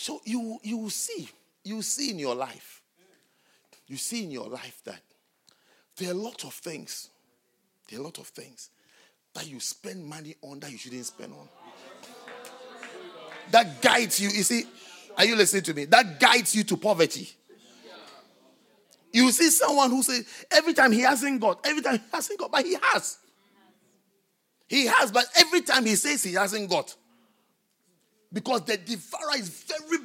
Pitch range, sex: 195-285 Hz, male